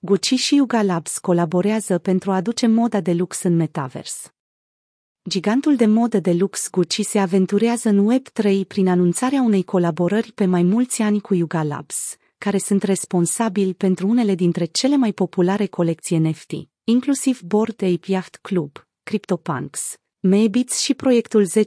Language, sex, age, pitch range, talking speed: Romanian, female, 30-49, 180-225 Hz, 150 wpm